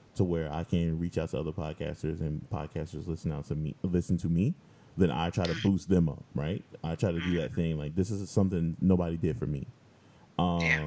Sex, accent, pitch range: male, American, 85-105 Hz